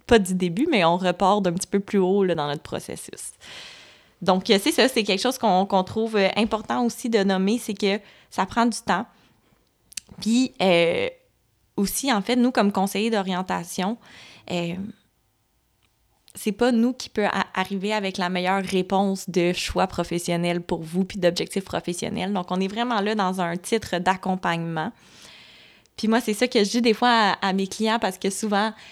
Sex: female